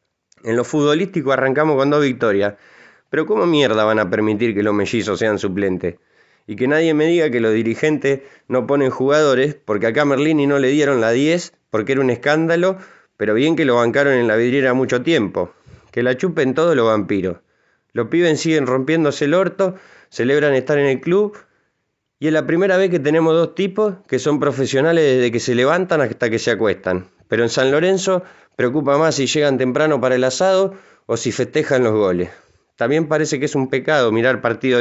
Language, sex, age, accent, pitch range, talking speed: Spanish, male, 20-39, Argentinian, 120-155 Hz, 195 wpm